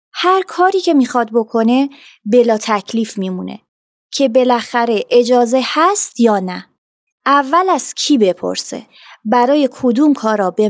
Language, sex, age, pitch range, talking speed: Persian, female, 30-49, 215-285 Hz, 125 wpm